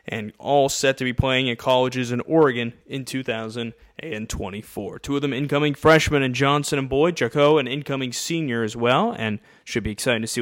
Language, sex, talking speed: English, male, 190 wpm